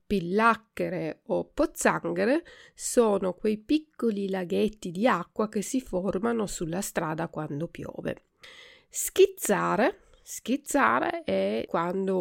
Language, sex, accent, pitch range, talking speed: Italian, female, native, 180-235 Hz, 100 wpm